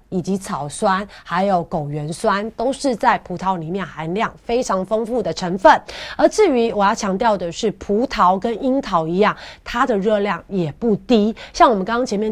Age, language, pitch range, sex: 30-49, Chinese, 180-235 Hz, female